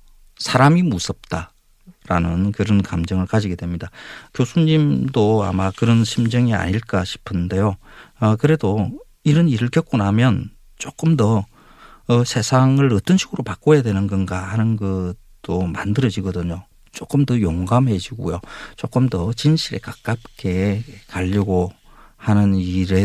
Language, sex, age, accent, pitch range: Korean, male, 40-59, native, 90-120 Hz